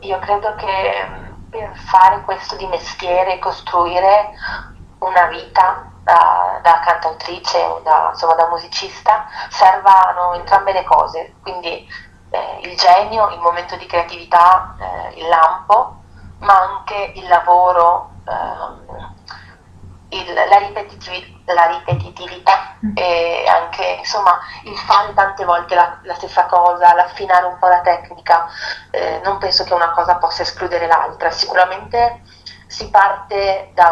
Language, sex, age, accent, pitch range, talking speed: Italian, female, 30-49, native, 165-190 Hz, 125 wpm